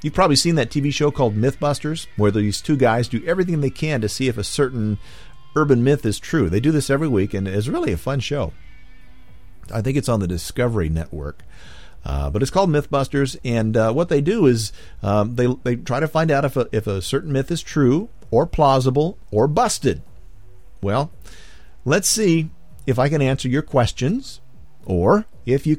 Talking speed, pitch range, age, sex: 200 wpm, 100-140 Hz, 50-69, male